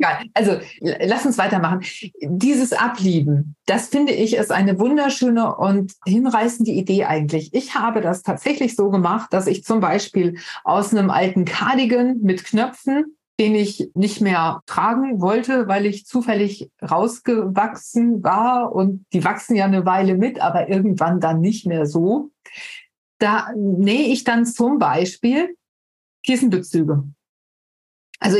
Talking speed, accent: 135 wpm, German